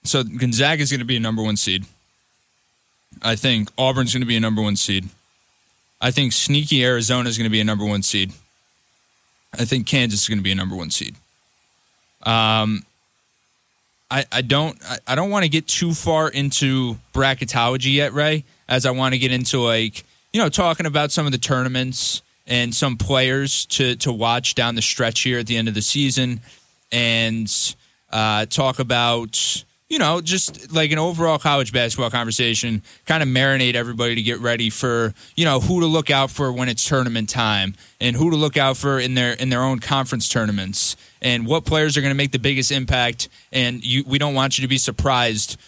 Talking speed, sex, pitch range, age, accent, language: 200 wpm, male, 115-140 Hz, 20-39, American, English